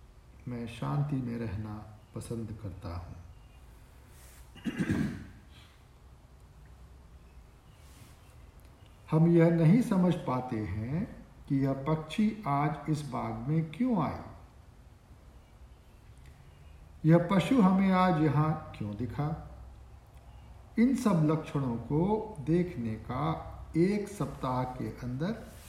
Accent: Indian